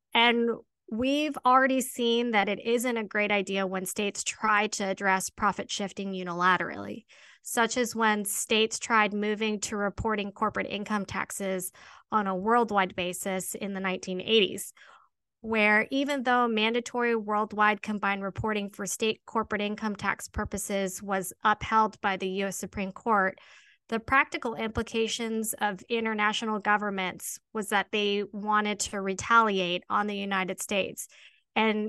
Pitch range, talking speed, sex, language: 195-225 Hz, 135 wpm, female, English